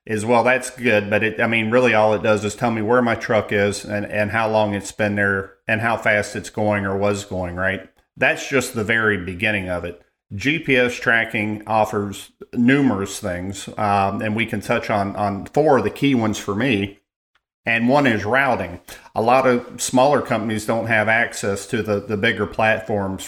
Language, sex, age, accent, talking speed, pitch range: English, male, 40-59, American, 200 wpm, 100-115 Hz